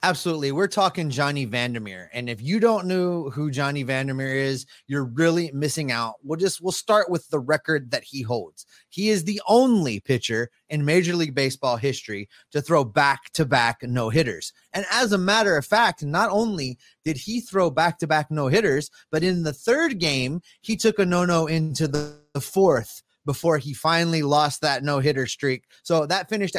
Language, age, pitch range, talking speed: English, 30-49, 135-185 Hz, 175 wpm